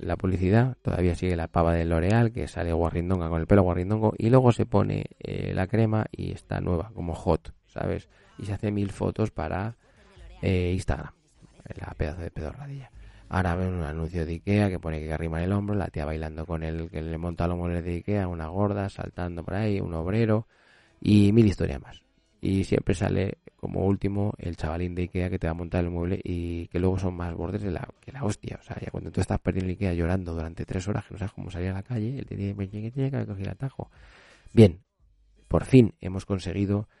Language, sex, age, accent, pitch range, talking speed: Spanish, male, 20-39, Spanish, 85-105 Hz, 220 wpm